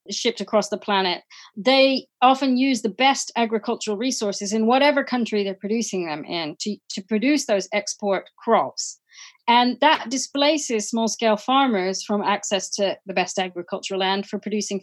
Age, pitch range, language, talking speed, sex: 40-59, 195-245 Hz, English, 155 wpm, female